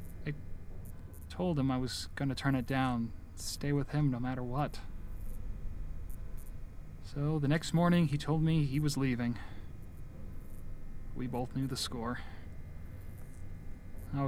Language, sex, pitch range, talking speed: English, male, 90-140 Hz, 135 wpm